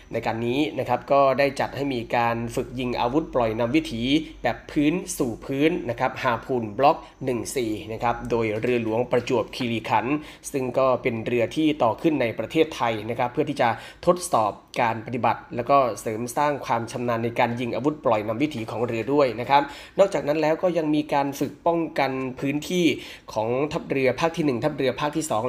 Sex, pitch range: male, 120-145 Hz